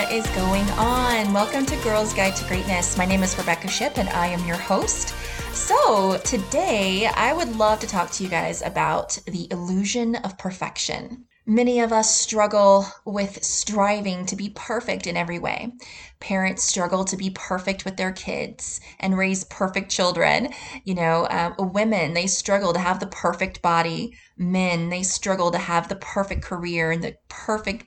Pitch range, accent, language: 185-240 Hz, American, English